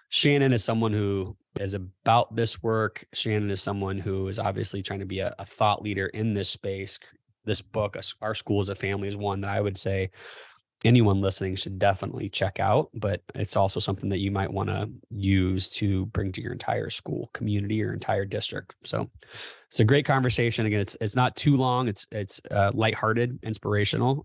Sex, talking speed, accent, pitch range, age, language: male, 195 wpm, American, 100-115 Hz, 20-39, English